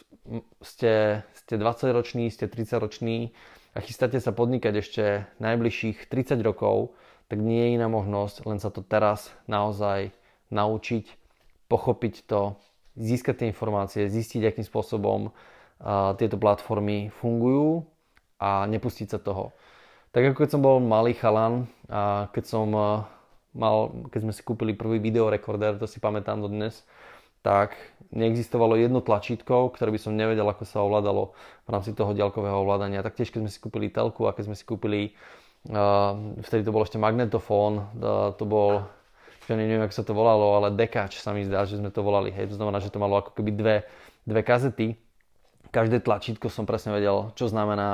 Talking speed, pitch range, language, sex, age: 165 wpm, 105-115 Hz, Slovak, male, 20-39